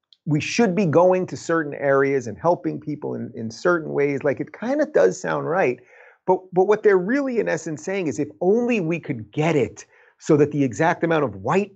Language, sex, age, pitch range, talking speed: English, male, 30-49, 135-195 Hz, 220 wpm